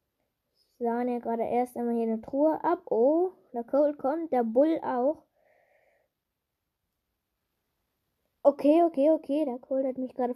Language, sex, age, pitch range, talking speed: German, female, 10-29, 245-315 Hz, 140 wpm